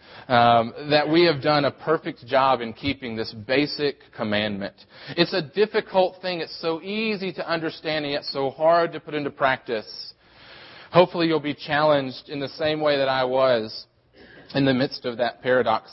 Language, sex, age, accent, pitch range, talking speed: English, male, 30-49, American, 120-155 Hz, 175 wpm